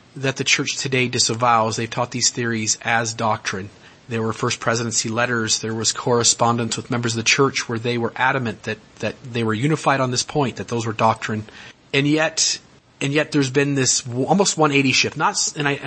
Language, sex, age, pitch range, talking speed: English, male, 30-49, 120-145 Hz, 200 wpm